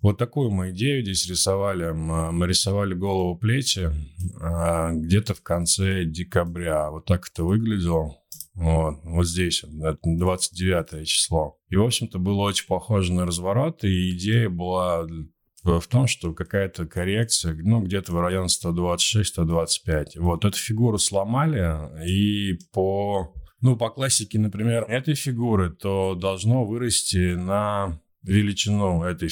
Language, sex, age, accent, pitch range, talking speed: Russian, male, 20-39, native, 85-105 Hz, 125 wpm